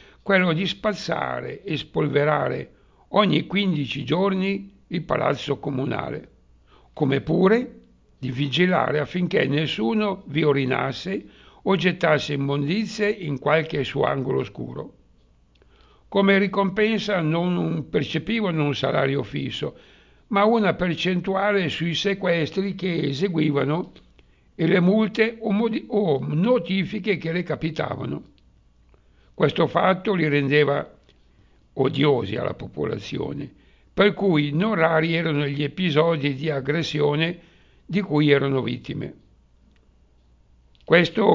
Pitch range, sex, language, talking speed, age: 140-185 Hz, male, Italian, 105 wpm, 60-79